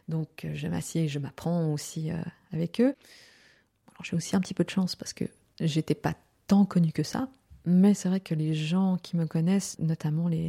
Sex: female